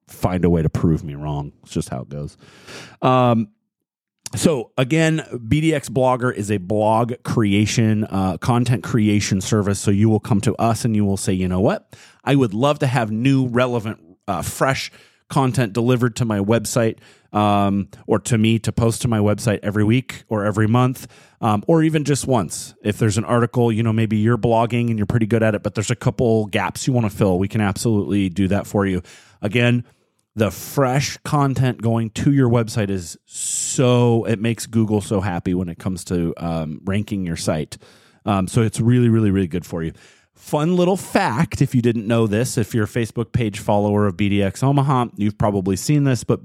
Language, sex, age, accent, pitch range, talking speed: English, male, 30-49, American, 105-125 Hz, 200 wpm